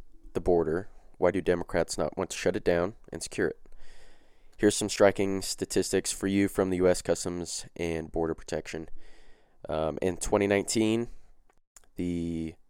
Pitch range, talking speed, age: 80-95 Hz, 140 wpm, 20-39